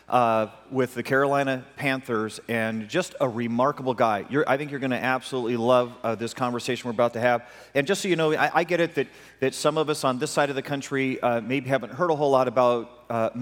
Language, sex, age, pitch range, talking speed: English, male, 40-59, 125-150 Hz, 240 wpm